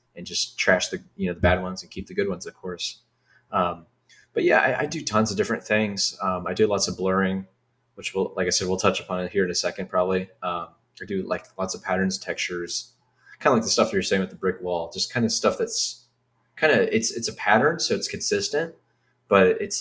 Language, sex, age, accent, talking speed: English, male, 20-39, American, 250 wpm